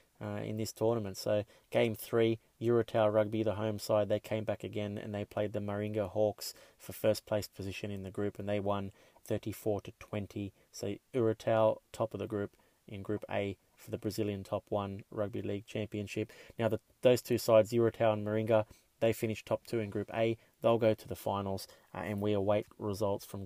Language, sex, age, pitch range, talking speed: English, male, 20-39, 100-110 Hz, 195 wpm